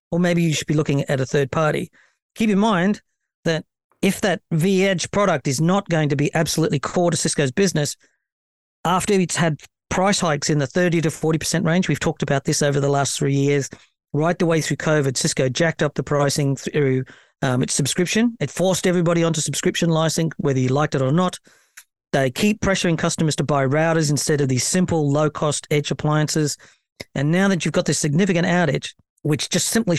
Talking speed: 200 wpm